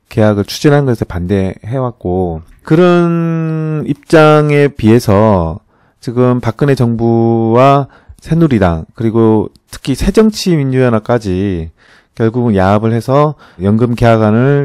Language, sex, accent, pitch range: Korean, male, native, 100-135 Hz